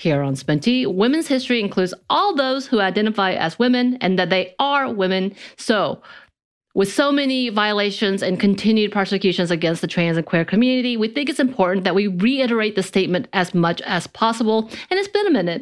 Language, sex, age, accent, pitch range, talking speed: English, female, 30-49, American, 175-255 Hz, 190 wpm